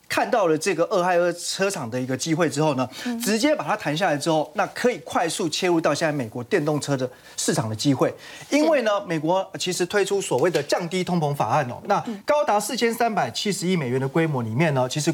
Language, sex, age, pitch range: Chinese, male, 30-49, 135-195 Hz